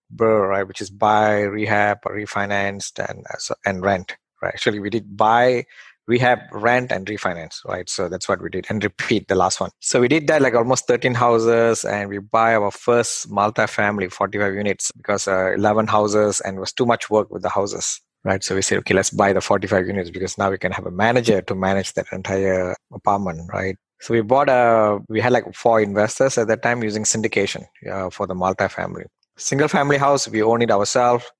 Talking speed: 205 wpm